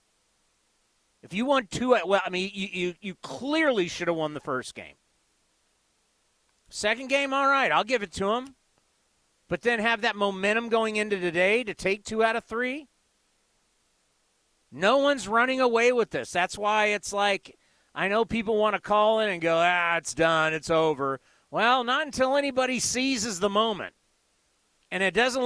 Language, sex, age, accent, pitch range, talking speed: English, male, 40-59, American, 180-230 Hz, 175 wpm